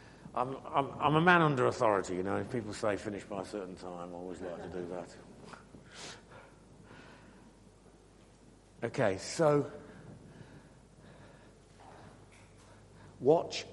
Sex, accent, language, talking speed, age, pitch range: male, British, English, 110 wpm, 50-69, 105-155 Hz